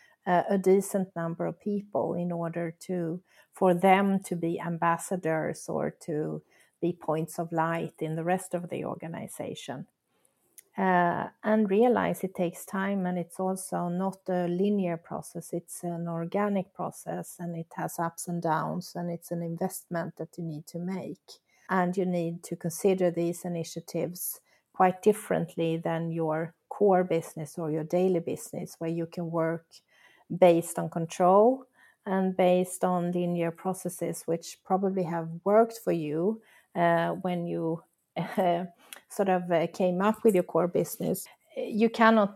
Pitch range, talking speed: 170-190 Hz, 150 wpm